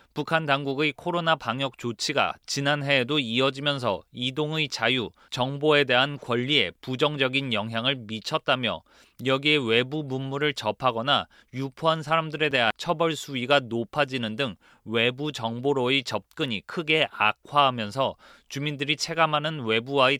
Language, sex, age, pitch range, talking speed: English, male, 30-49, 120-150 Hz, 100 wpm